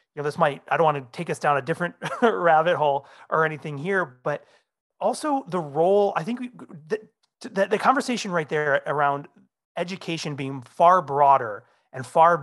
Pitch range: 140-185 Hz